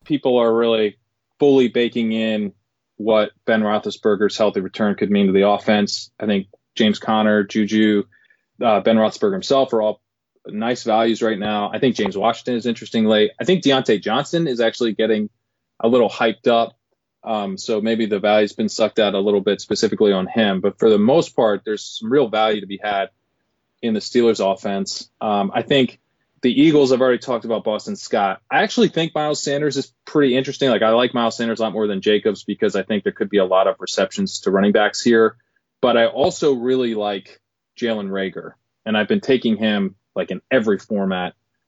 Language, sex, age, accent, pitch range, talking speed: English, male, 20-39, American, 105-130 Hz, 200 wpm